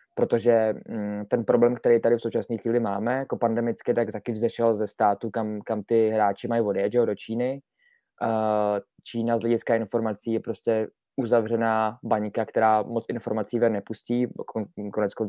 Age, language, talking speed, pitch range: 20-39, Czech, 150 wpm, 105-115 Hz